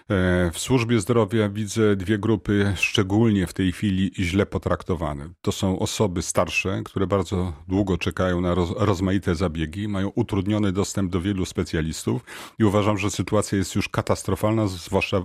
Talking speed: 145 wpm